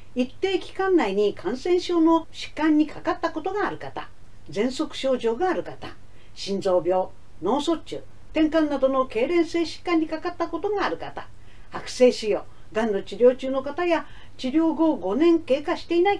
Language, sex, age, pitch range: Japanese, female, 50-69, 220-340 Hz